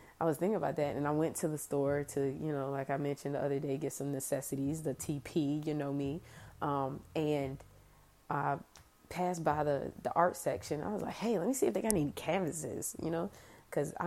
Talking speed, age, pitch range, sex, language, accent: 220 wpm, 20-39, 140-165 Hz, female, English, American